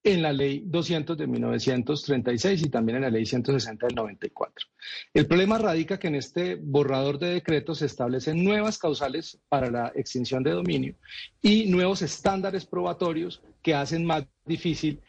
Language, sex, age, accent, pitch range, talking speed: Spanish, male, 40-59, Colombian, 130-175 Hz, 160 wpm